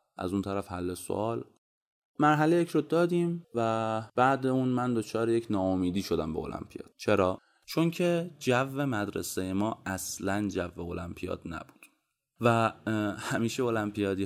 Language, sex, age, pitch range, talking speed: Persian, male, 30-49, 90-110 Hz, 140 wpm